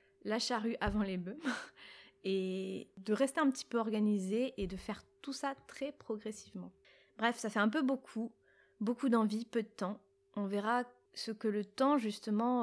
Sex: female